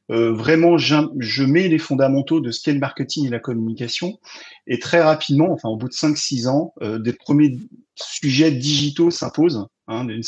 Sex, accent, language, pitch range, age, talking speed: male, French, French, 115-150 Hz, 40-59, 185 wpm